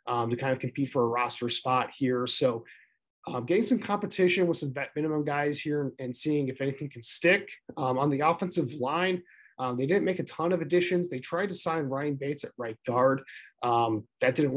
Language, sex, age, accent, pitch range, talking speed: English, male, 20-39, American, 130-160 Hz, 220 wpm